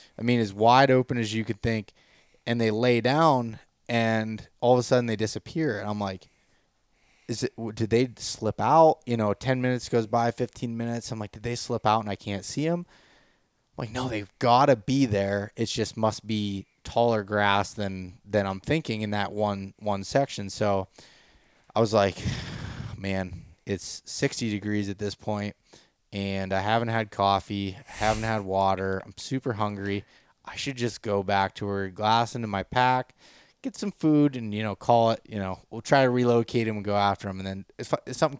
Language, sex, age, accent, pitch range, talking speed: English, male, 20-39, American, 100-125 Hz, 200 wpm